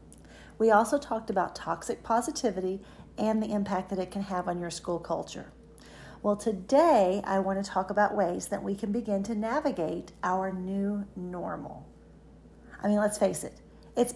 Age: 40-59